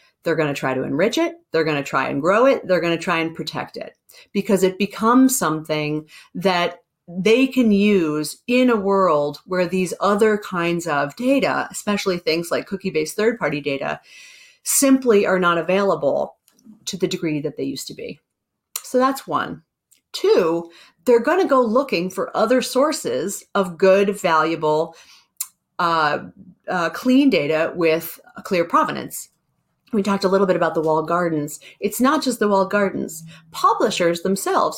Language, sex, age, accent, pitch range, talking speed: English, female, 30-49, American, 165-225 Hz, 160 wpm